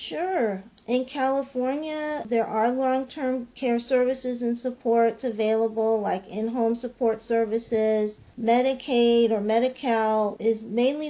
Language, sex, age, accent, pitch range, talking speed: English, female, 40-59, American, 205-235 Hz, 110 wpm